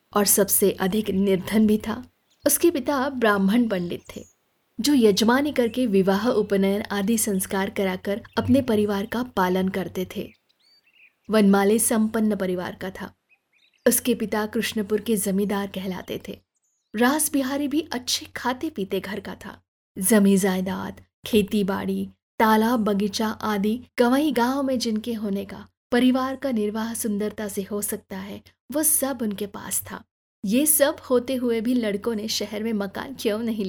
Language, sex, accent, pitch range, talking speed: Hindi, female, native, 205-260 Hz, 150 wpm